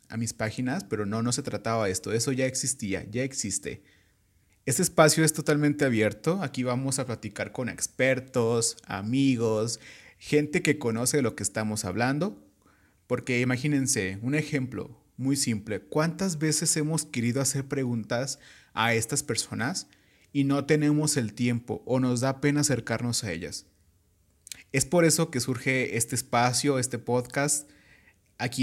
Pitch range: 115-145 Hz